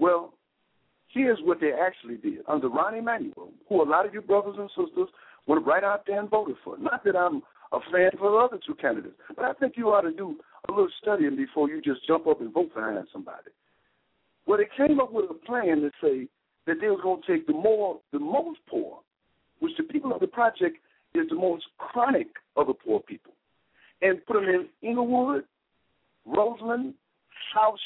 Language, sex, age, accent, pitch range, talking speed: English, male, 60-79, American, 205-310 Hz, 205 wpm